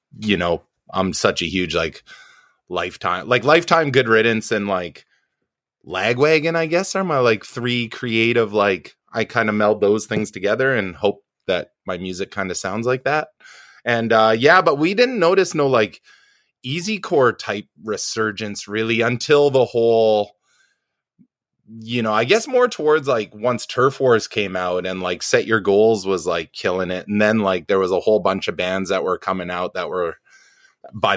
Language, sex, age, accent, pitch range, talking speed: English, male, 20-39, American, 95-125 Hz, 185 wpm